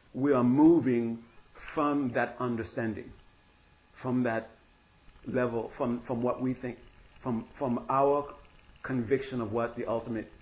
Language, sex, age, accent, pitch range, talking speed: English, male, 50-69, American, 100-130 Hz, 125 wpm